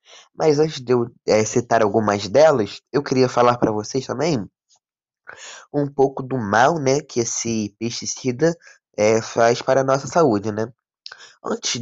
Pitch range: 115-145 Hz